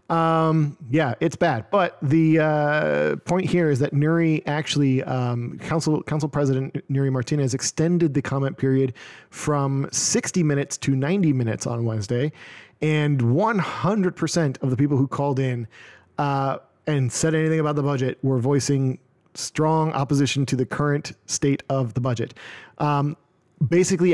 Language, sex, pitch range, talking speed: English, male, 135-155 Hz, 145 wpm